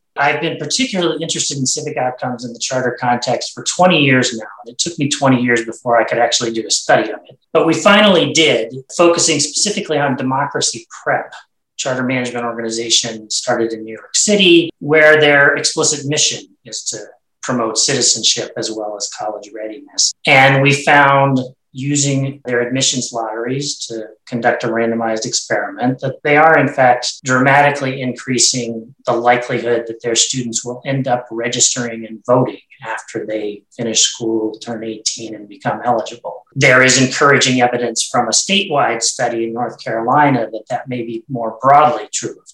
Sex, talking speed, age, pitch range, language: male, 165 wpm, 30-49, 115-145 Hz, English